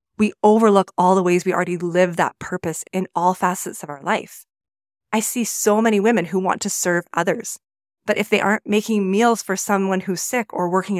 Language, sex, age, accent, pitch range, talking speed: English, female, 30-49, American, 180-220 Hz, 205 wpm